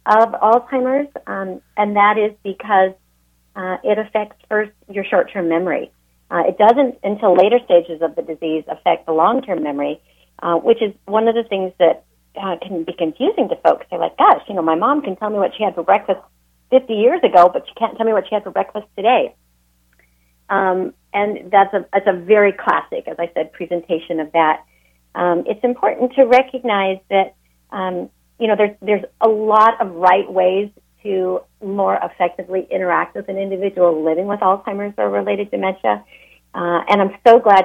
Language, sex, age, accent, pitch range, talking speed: English, female, 40-59, American, 170-210 Hz, 190 wpm